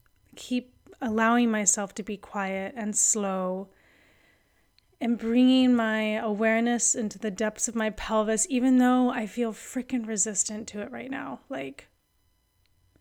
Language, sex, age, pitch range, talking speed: English, female, 30-49, 200-235 Hz, 135 wpm